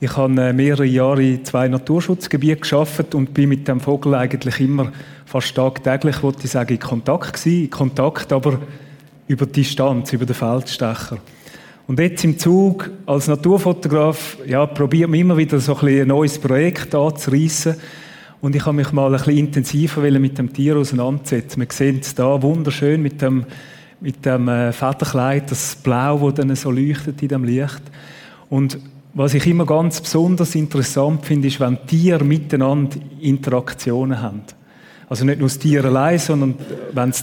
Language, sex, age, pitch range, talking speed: German, male, 30-49, 135-150 Hz, 165 wpm